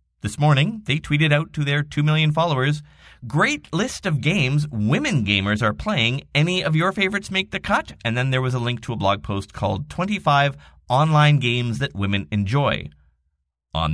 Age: 30-49